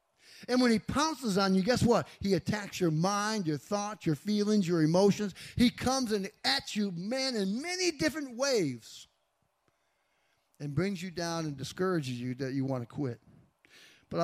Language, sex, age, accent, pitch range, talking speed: English, male, 50-69, American, 135-185 Hz, 175 wpm